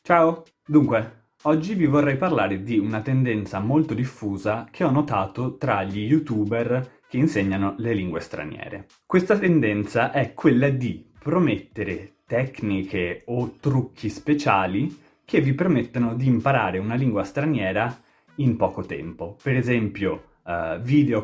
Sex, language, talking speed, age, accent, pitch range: male, Italian, 135 wpm, 20-39, native, 105-135 Hz